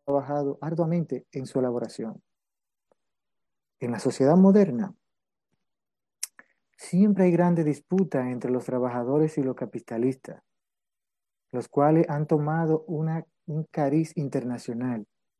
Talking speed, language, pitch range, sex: 105 wpm, Spanish, 125-160 Hz, male